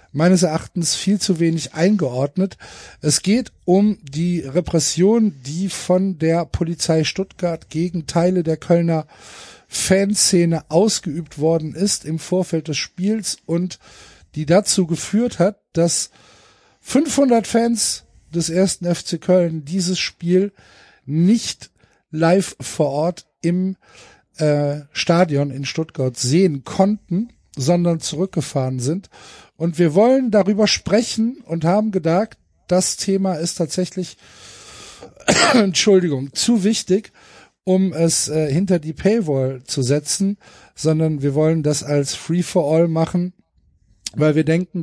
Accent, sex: German, male